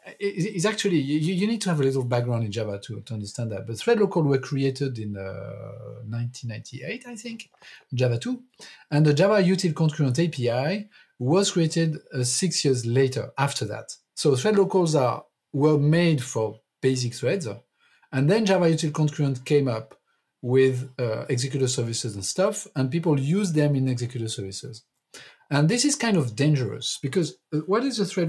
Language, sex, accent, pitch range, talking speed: English, male, French, 125-170 Hz, 170 wpm